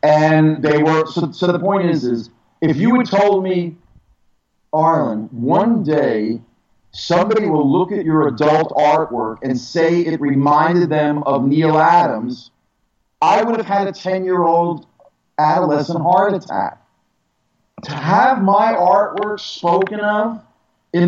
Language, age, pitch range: English, 40-59, 150-210 Hz